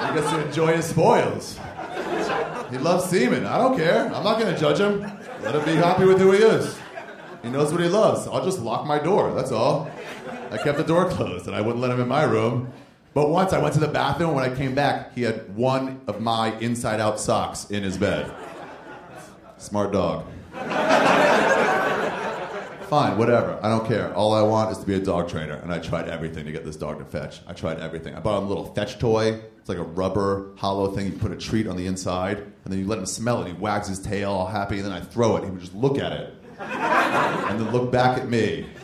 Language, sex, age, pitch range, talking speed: English, male, 30-49, 95-140 Hz, 235 wpm